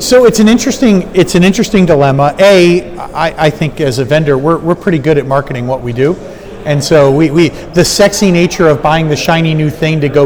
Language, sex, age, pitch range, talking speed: English, male, 40-59, 145-175 Hz, 230 wpm